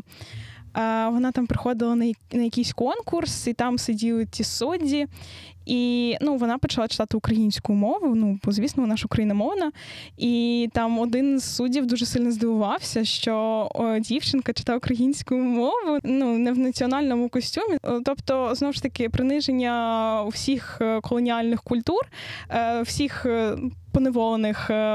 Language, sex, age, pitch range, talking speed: Ukrainian, female, 10-29, 230-275 Hz, 125 wpm